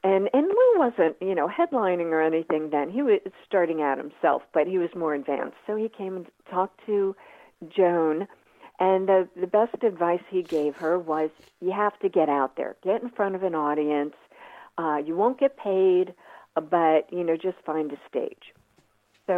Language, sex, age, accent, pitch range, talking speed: English, female, 50-69, American, 155-200 Hz, 190 wpm